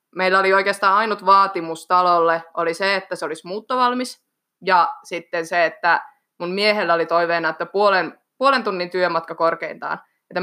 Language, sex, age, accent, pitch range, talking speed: Finnish, female, 20-39, native, 170-210 Hz, 155 wpm